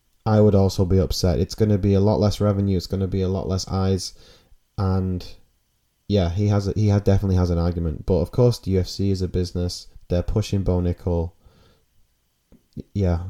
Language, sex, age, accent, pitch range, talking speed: English, male, 20-39, British, 90-110 Hz, 205 wpm